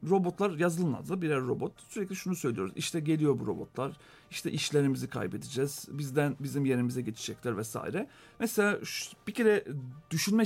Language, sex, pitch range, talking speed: Turkish, male, 145-215 Hz, 140 wpm